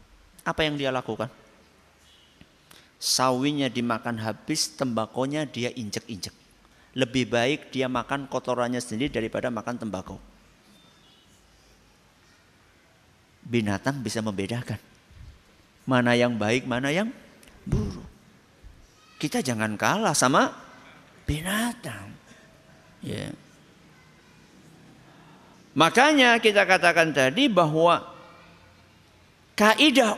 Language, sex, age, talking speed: Malay, male, 50-69, 80 wpm